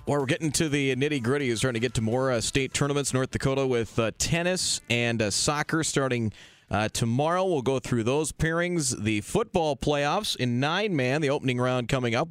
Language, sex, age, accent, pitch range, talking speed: English, male, 30-49, American, 115-145 Hz, 200 wpm